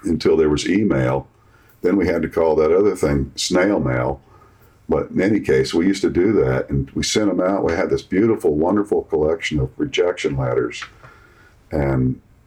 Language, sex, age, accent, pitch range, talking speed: English, male, 50-69, American, 70-115 Hz, 185 wpm